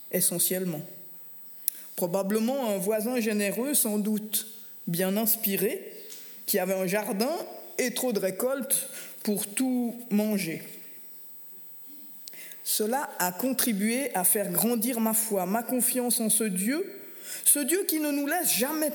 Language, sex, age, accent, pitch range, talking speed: French, female, 50-69, French, 195-250 Hz, 125 wpm